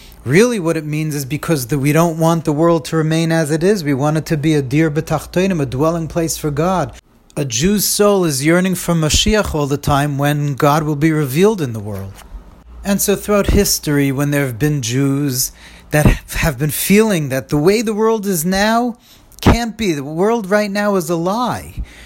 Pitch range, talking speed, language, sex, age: 135-180 Hz, 205 wpm, English, male, 40-59